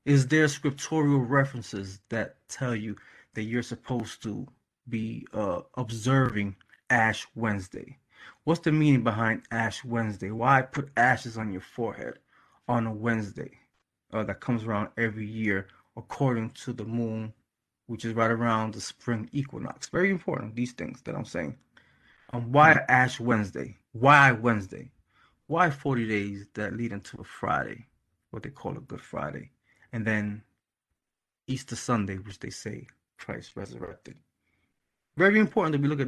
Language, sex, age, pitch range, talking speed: English, male, 20-39, 110-140 Hz, 150 wpm